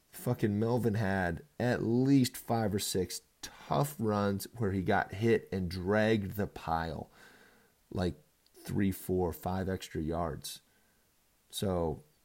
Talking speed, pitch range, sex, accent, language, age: 120 wpm, 90-115 Hz, male, American, English, 30-49